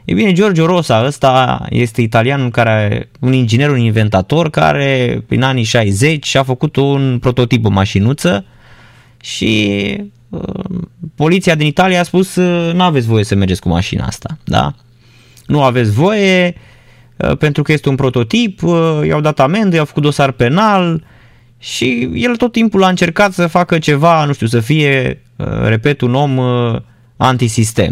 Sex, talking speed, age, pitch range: male, 160 wpm, 20-39, 120-155 Hz